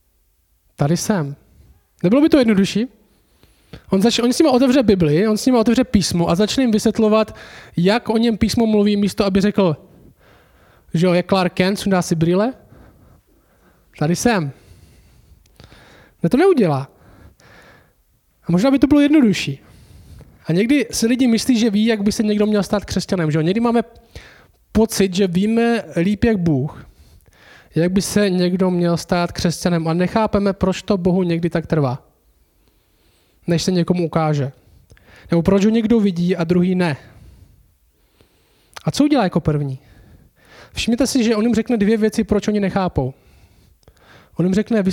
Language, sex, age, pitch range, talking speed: Czech, male, 20-39, 145-215 Hz, 160 wpm